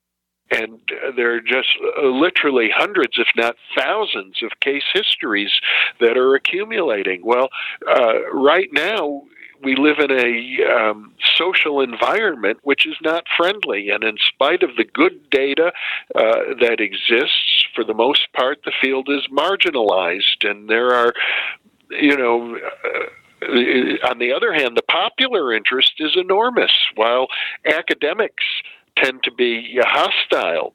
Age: 50-69